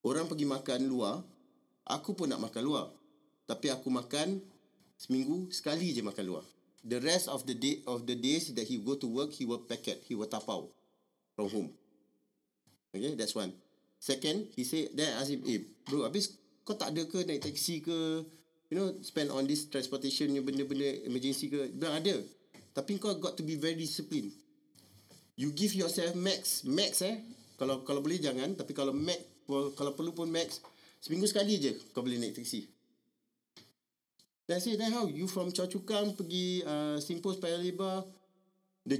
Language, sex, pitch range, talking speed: Malay, male, 140-190 Hz, 170 wpm